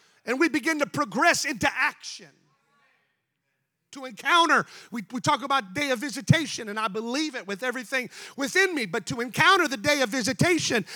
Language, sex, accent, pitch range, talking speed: English, male, American, 230-300 Hz, 170 wpm